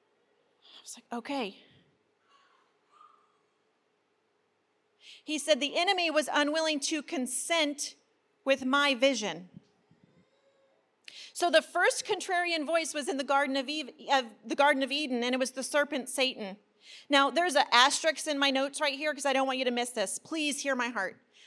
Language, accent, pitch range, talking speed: English, American, 240-310 Hz, 150 wpm